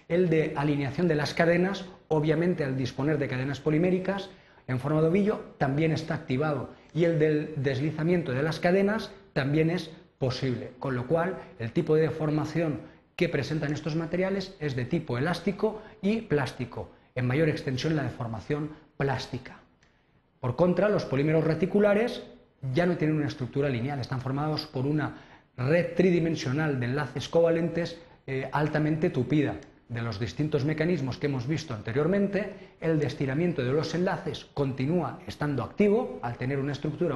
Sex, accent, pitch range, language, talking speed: male, Spanish, 135-170 Hz, Spanish, 155 wpm